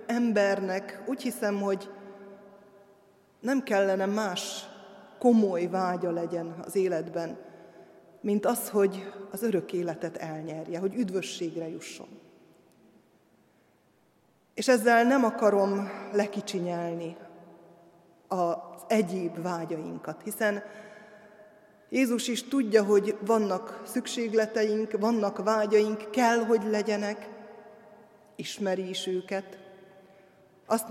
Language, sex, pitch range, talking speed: Hungarian, female, 190-220 Hz, 90 wpm